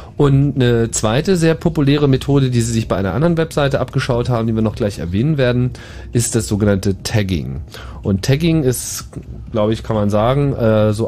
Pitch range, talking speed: 105-130 Hz, 185 wpm